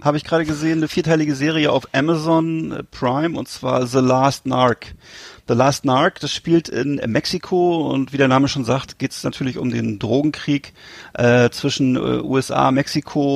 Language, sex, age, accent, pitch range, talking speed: German, male, 40-59, German, 130-150 Hz, 175 wpm